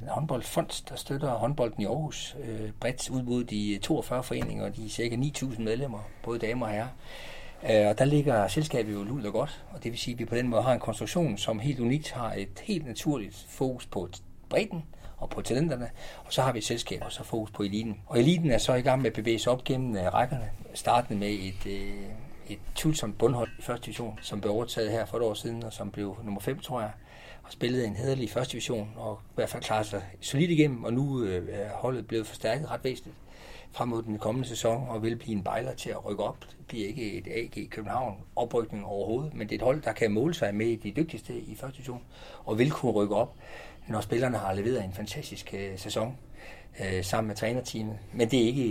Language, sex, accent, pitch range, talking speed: Danish, male, native, 105-125 Hz, 225 wpm